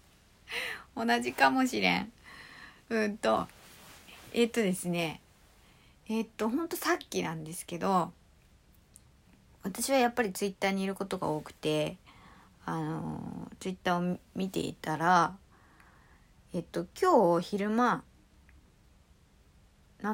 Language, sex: Japanese, female